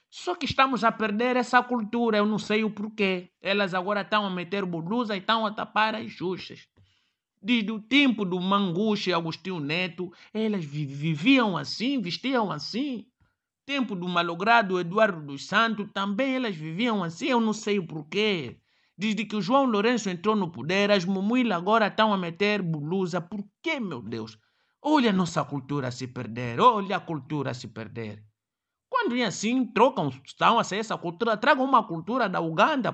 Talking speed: 175 wpm